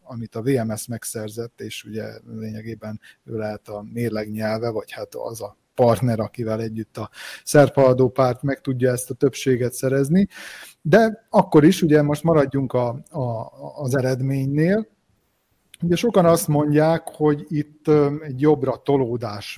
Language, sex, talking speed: Hungarian, male, 140 wpm